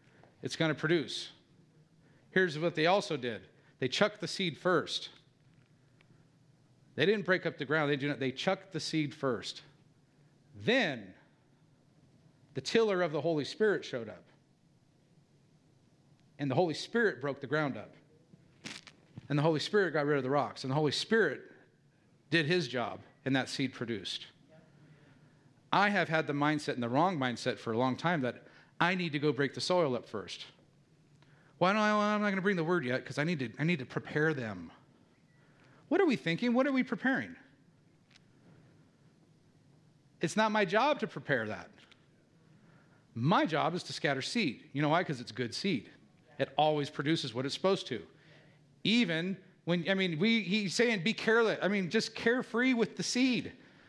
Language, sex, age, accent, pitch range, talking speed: English, male, 50-69, American, 145-190 Hz, 175 wpm